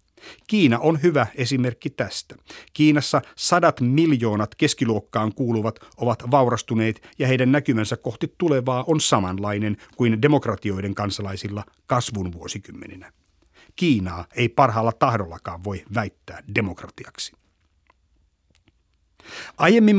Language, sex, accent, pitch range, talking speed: Finnish, male, native, 105-150 Hz, 95 wpm